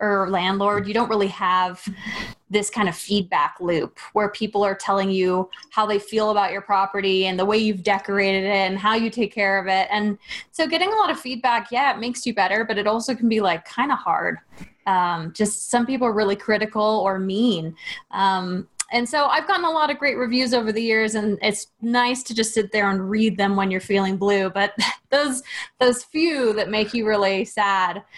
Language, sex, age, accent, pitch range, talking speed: English, female, 20-39, American, 195-240 Hz, 210 wpm